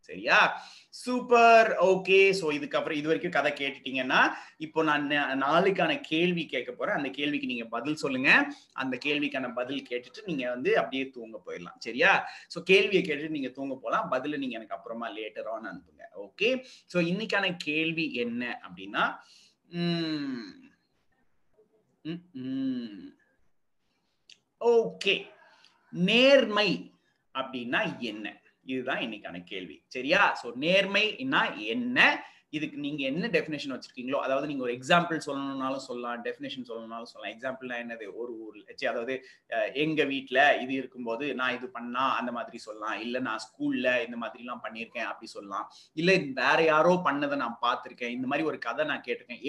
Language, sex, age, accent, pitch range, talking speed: Tamil, male, 30-49, native, 135-215 Hz, 90 wpm